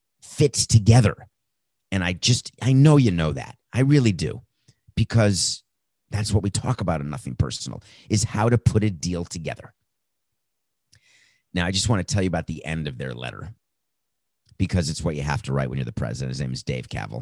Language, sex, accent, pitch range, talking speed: English, male, American, 90-115 Hz, 200 wpm